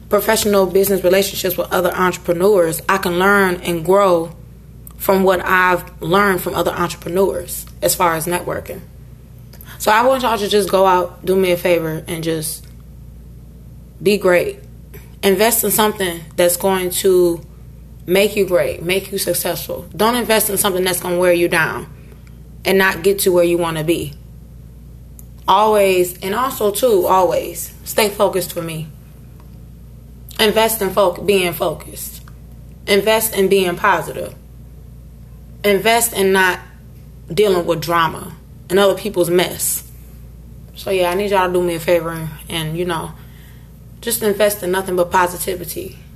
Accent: American